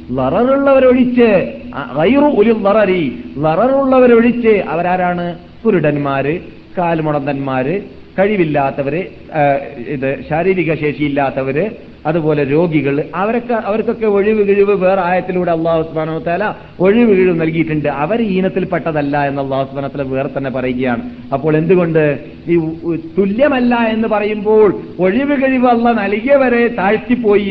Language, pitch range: Malayalam, 165-230 Hz